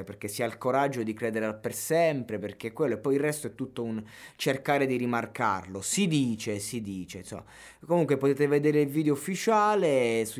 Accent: native